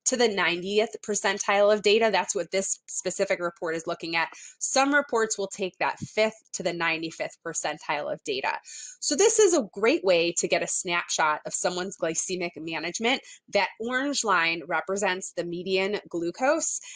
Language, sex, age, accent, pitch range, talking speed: English, female, 20-39, American, 175-235 Hz, 165 wpm